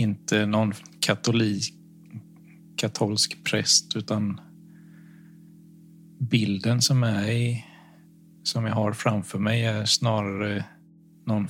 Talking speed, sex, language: 90 wpm, male, Swedish